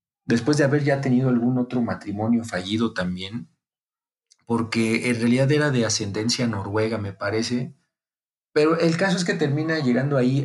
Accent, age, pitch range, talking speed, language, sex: Mexican, 40-59, 120-150 Hz, 155 wpm, Spanish, male